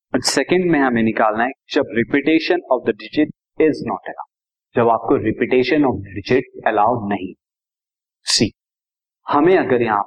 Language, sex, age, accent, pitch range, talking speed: Hindi, male, 30-49, native, 125-190 Hz, 135 wpm